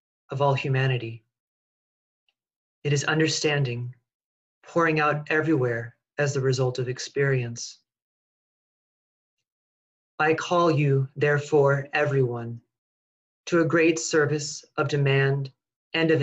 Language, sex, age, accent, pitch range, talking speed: English, male, 30-49, American, 130-150 Hz, 100 wpm